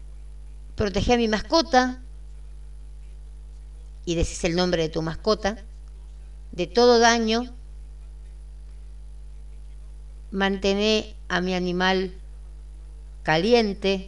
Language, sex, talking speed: Spanish, female, 85 wpm